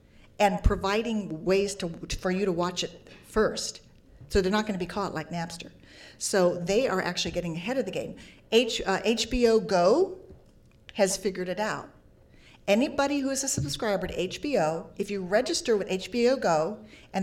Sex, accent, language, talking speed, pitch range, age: female, American, English, 175 wpm, 175-220 Hz, 40-59